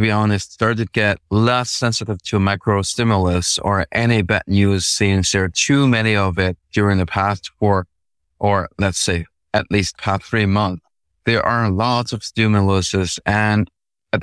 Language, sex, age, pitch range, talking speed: English, male, 30-49, 100-115 Hz, 165 wpm